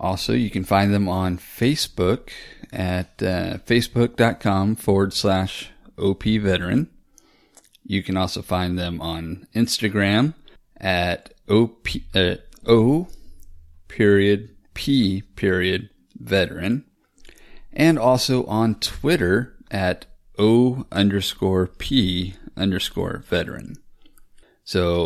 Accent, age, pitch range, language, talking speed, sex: American, 40-59, 95-110 Hz, English, 95 wpm, male